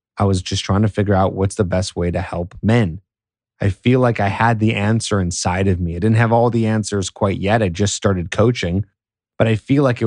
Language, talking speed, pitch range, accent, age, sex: English, 245 wpm, 100-115 Hz, American, 30-49, male